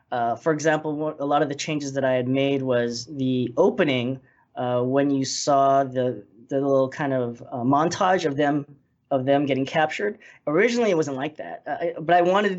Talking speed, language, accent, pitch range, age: 200 wpm, English, American, 130-170 Hz, 20-39